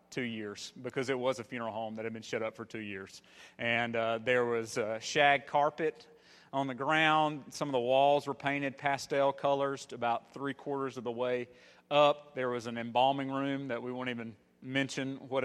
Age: 40-59